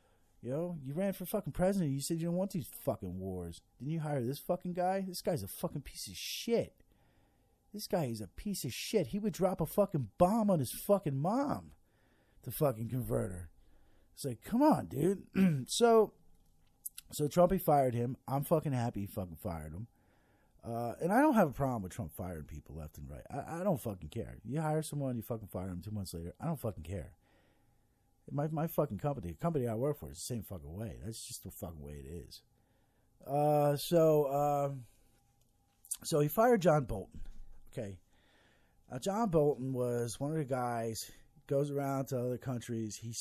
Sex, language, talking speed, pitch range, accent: male, English, 200 wpm, 100-150 Hz, American